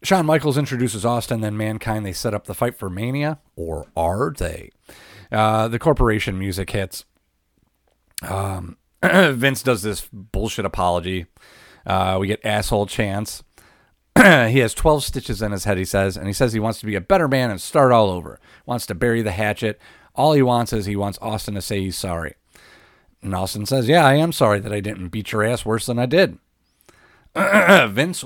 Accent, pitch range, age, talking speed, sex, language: American, 95-125 Hz, 40-59, 190 wpm, male, English